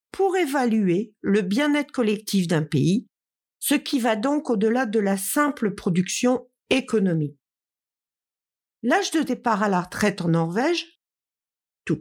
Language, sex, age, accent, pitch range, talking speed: French, female, 50-69, French, 195-300 Hz, 130 wpm